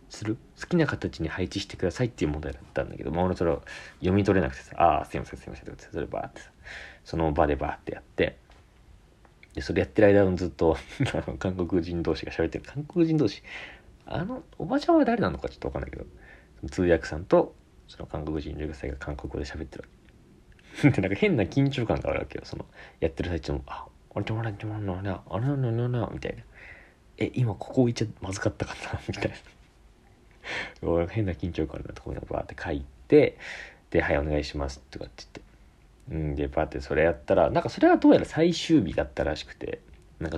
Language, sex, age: Japanese, male, 40-59